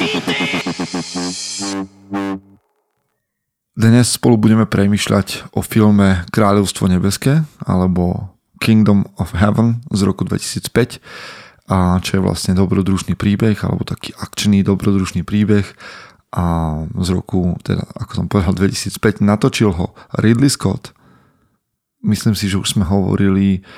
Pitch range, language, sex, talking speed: 95-115 Hz, Slovak, male, 110 wpm